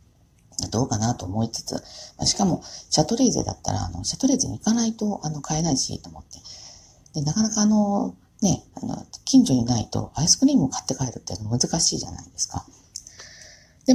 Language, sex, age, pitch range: Japanese, female, 40-59, 105-145 Hz